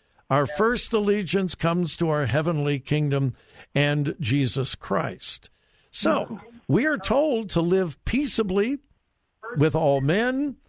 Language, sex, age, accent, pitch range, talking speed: English, male, 60-79, American, 145-200 Hz, 120 wpm